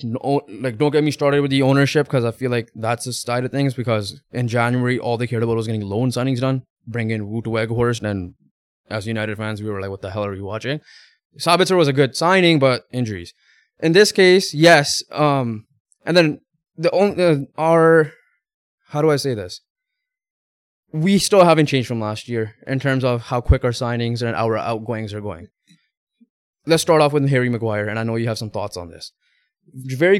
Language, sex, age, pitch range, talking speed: English, male, 20-39, 115-155 Hz, 210 wpm